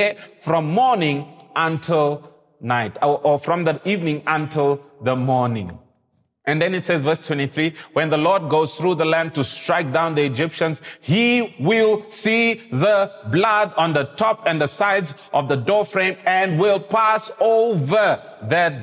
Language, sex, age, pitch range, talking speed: English, male, 30-49, 130-180 Hz, 155 wpm